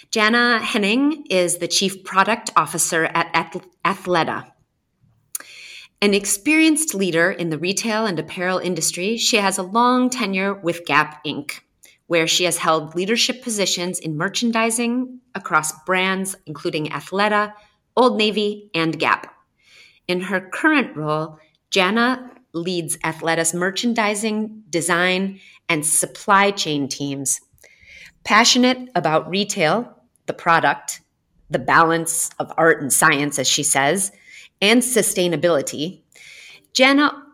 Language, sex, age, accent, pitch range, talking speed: English, female, 30-49, American, 160-220 Hz, 115 wpm